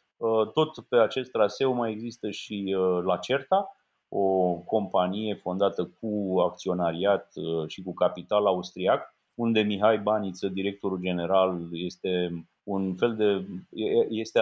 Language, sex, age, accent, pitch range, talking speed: Romanian, male, 30-49, native, 95-110 Hz, 115 wpm